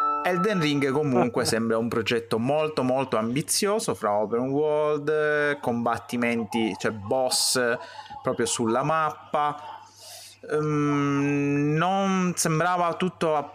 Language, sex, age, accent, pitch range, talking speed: Italian, male, 30-49, native, 110-150 Hz, 95 wpm